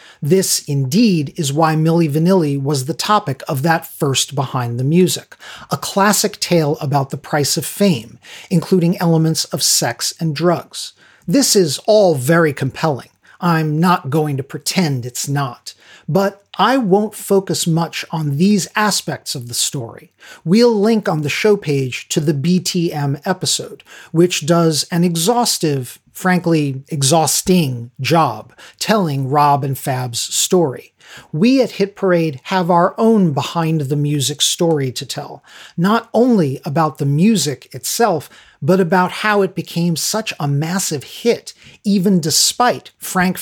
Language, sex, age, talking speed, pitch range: English, male, 40-59, 140 wpm, 145-195 Hz